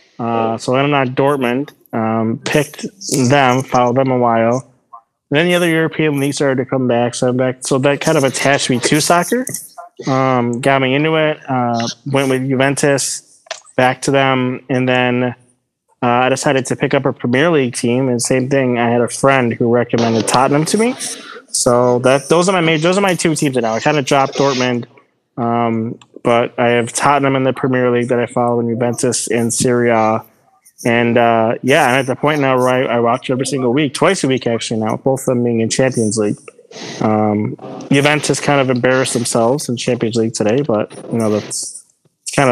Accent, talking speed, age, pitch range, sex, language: American, 205 wpm, 20-39, 120-145 Hz, male, English